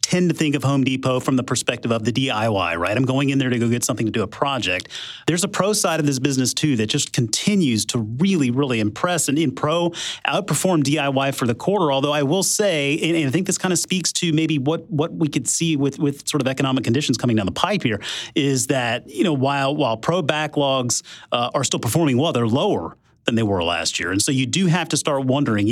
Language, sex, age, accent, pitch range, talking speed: English, male, 30-49, American, 115-150 Hz, 245 wpm